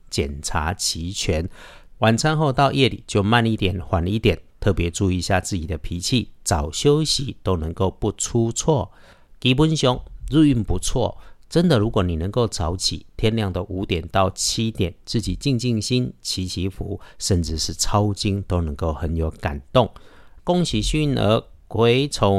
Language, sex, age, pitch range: Chinese, male, 50-69, 90-120 Hz